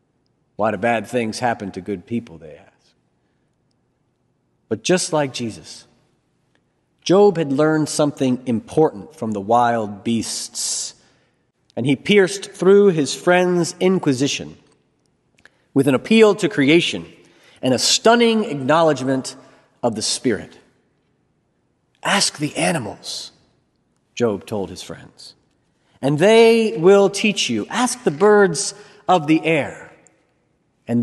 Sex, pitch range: male, 125-185 Hz